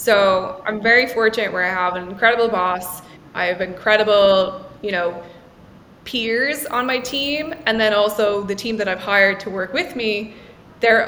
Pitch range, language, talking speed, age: 200-230 Hz, English, 175 wpm, 20-39